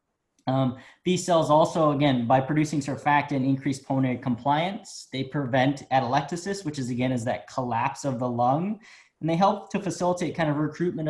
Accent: American